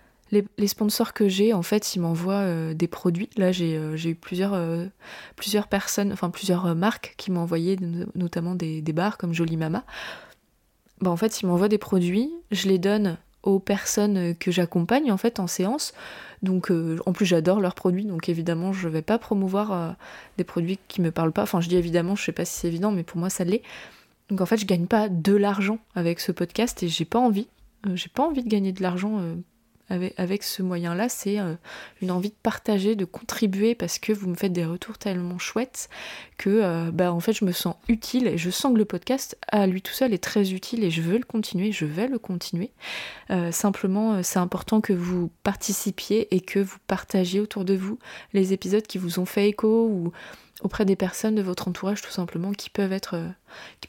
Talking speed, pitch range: 220 wpm, 175-210 Hz